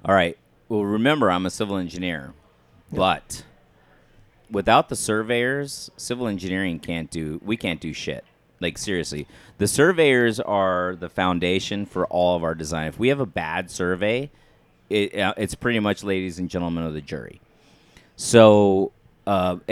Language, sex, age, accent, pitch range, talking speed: English, male, 30-49, American, 85-110 Hz, 150 wpm